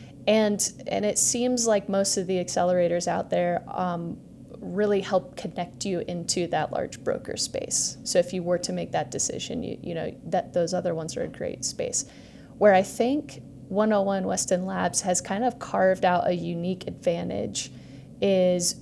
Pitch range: 175-200 Hz